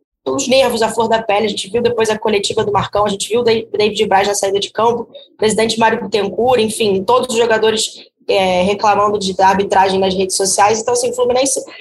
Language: Portuguese